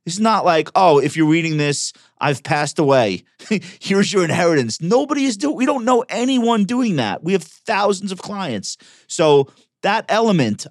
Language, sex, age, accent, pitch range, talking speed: English, male, 40-59, American, 115-175 Hz, 175 wpm